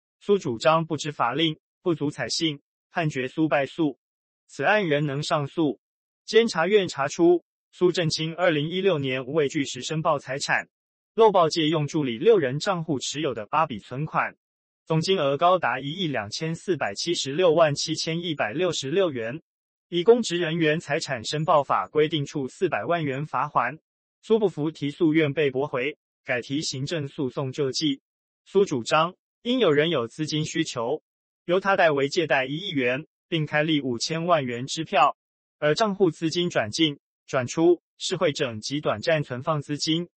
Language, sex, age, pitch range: Chinese, male, 20-39, 140-170 Hz